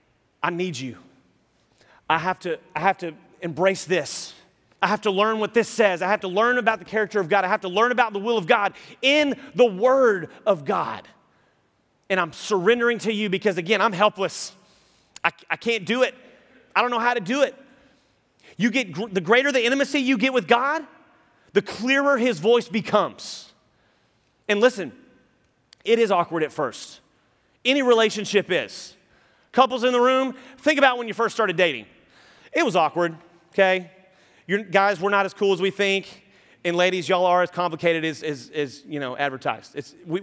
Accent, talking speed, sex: American, 190 wpm, male